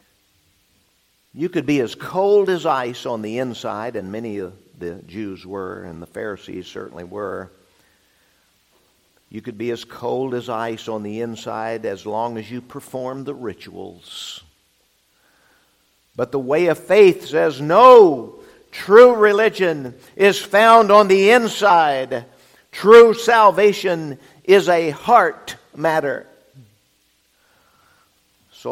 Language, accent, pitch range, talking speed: English, American, 115-170 Hz, 125 wpm